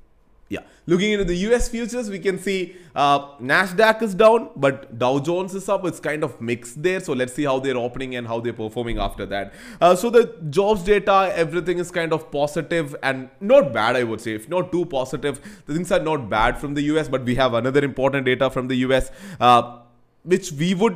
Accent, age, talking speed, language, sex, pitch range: Indian, 20-39, 215 wpm, English, male, 120-165 Hz